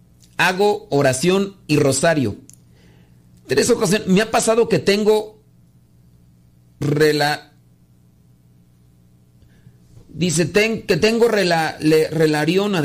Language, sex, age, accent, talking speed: Spanish, male, 50-69, Mexican, 65 wpm